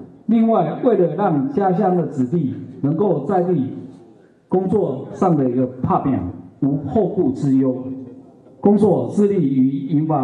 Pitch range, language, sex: 130-185 Hz, Chinese, male